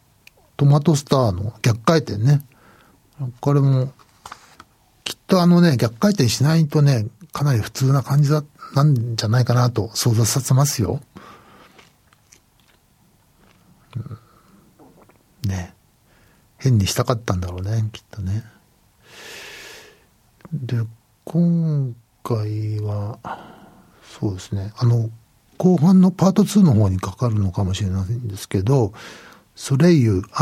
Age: 60-79